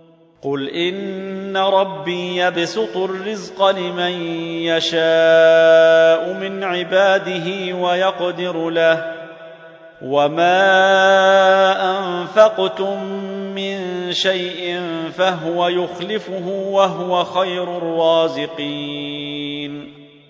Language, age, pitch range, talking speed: Arabic, 40-59, 165-190 Hz, 60 wpm